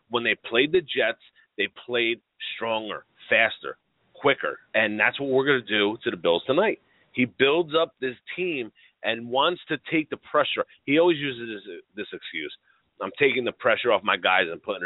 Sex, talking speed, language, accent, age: male, 190 wpm, English, American, 30-49